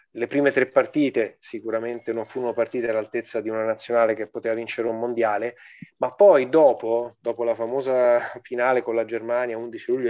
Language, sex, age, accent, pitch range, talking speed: Italian, male, 20-39, native, 115-125 Hz, 170 wpm